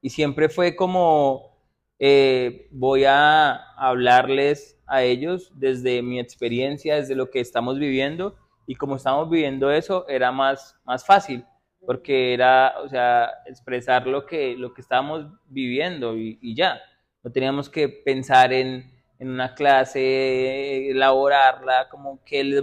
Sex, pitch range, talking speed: male, 125-140 Hz, 140 wpm